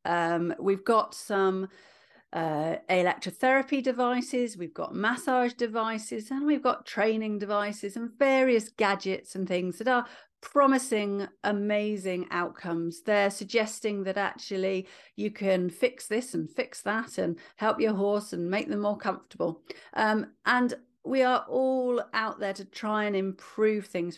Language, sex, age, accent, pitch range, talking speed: English, female, 40-59, British, 190-235 Hz, 145 wpm